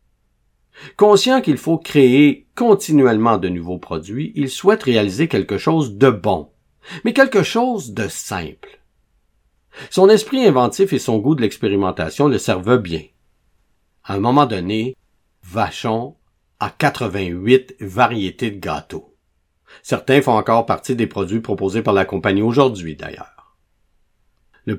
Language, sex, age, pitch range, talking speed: French, male, 50-69, 90-140 Hz, 130 wpm